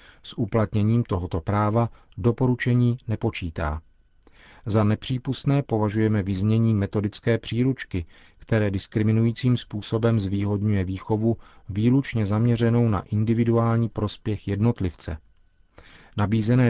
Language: Czech